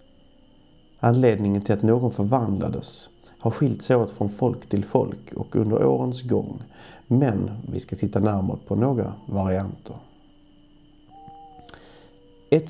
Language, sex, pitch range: Swedish, male, 100-125 Hz